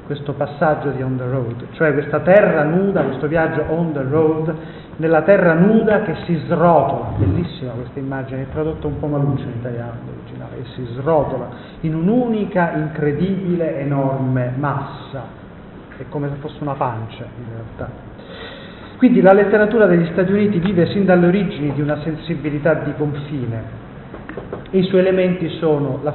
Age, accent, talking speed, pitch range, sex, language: 40-59, native, 155 wpm, 140-185 Hz, male, Italian